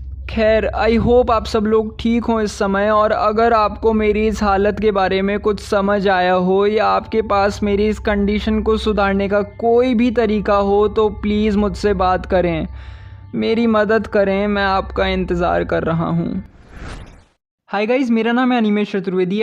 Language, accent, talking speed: Hindi, native, 175 wpm